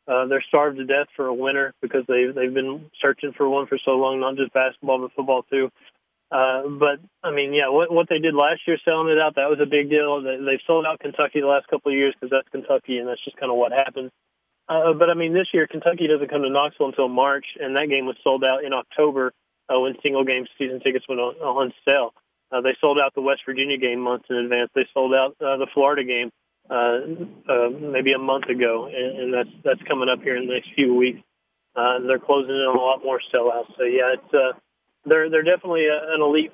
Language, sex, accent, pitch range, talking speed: English, male, American, 130-150 Hz, 245 wpm